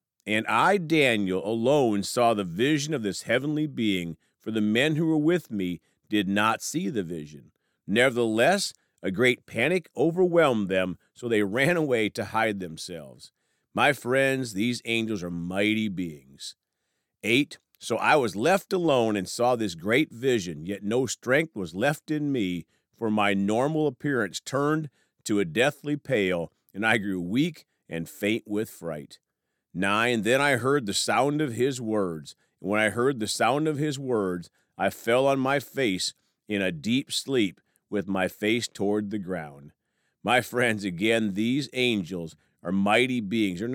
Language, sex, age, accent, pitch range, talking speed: English, male, 40-59, American, 100-130 Hz, 165 wpm